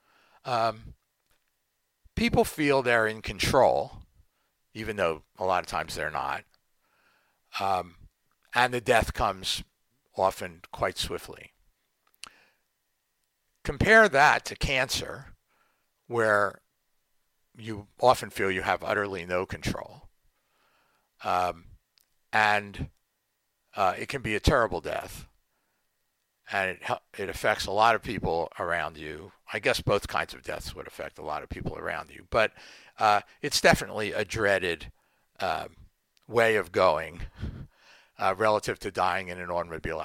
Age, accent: 60-79, American